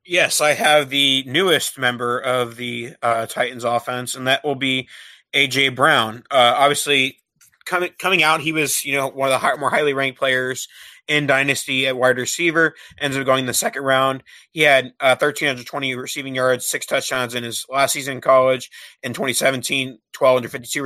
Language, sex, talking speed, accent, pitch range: English, male, 180 wpm, American, 125-145 Hz